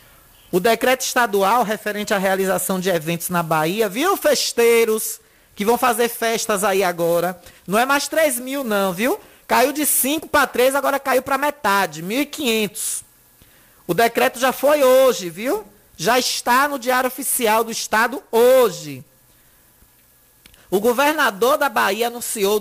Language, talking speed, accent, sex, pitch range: Portuguese, 145 wpm, Brazilian, male, 195-255 Hz